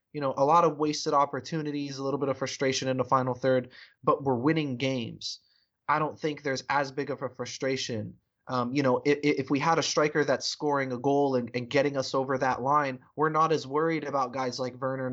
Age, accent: 20-39, American